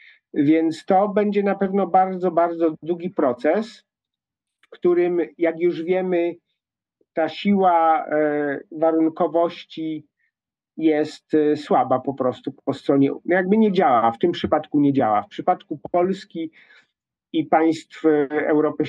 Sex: male